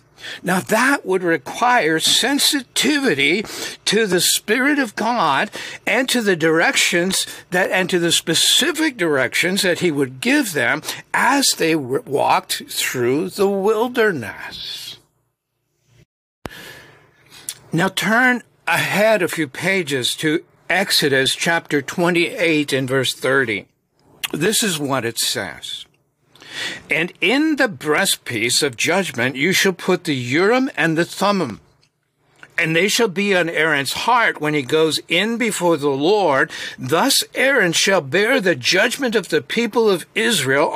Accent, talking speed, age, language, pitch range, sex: American, 130 wpm, 60-79, English, 155-215 Hz, male